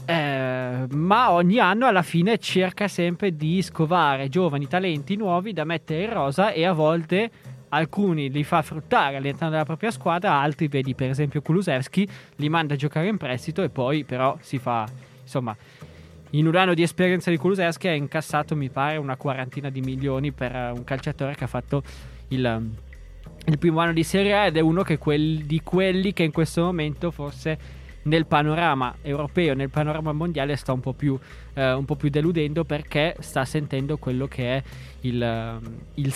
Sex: male